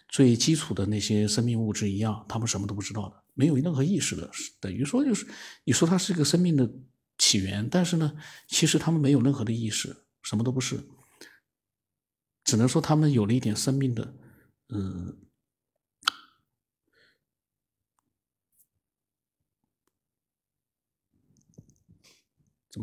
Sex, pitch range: male, 105-140 Hz